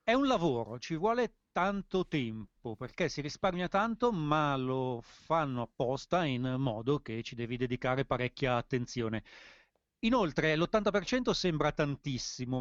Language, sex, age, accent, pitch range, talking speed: Italian, male, 40-59, native, 130-175 Hz, 130 wpm